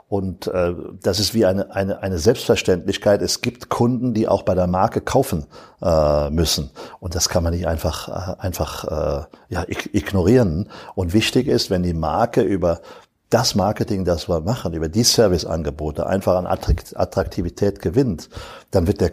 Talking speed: 155 wpm